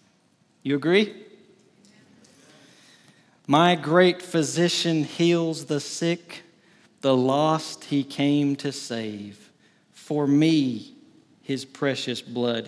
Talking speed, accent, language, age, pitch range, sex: 90 wpm, American, English, 40-59, 125-165 Hz, male